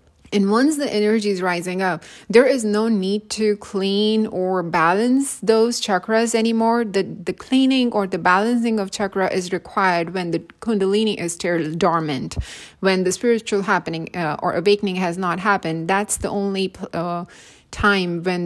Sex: female